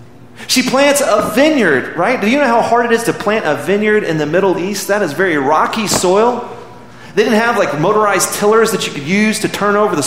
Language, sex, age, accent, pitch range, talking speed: English, male, 30-49, American, 120-205 Hz, 230 wpm